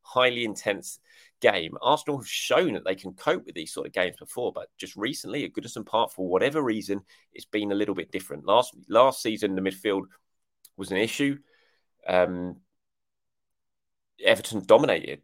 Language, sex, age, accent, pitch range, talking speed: English, male, 30-49, British, 95-125 Hz, 165 wpm